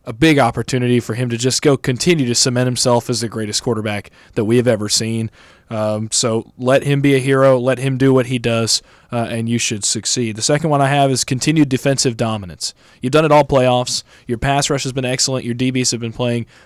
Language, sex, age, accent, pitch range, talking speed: English, male, 20-39, American, 120-150 Hz, 230 wpm